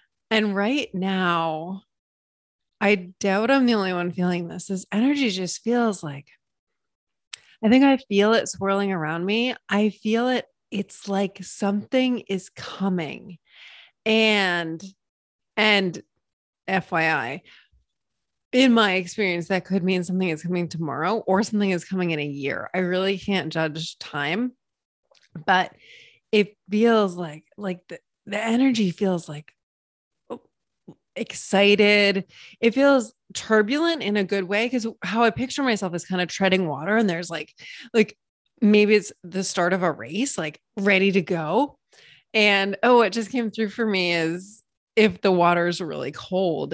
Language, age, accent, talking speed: English, 30-49, American, 150 wpm